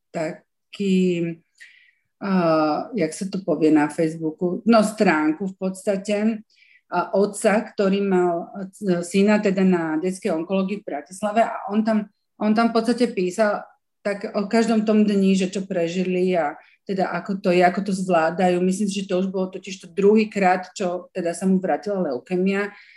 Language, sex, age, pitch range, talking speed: Slovak, female, 40-59, 185-215 Hz, 160 wpm